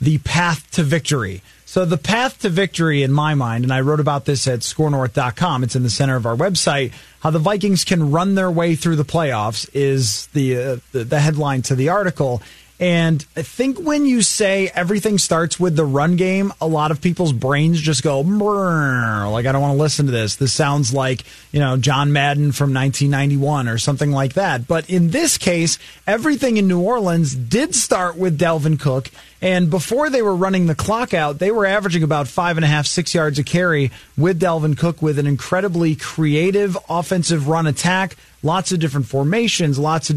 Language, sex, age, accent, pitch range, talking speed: English, male, 30-49, American, 145-185 Hz, 200 wpm